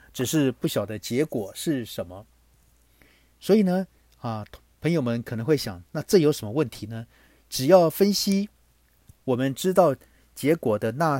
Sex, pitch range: male, 115-160 Hz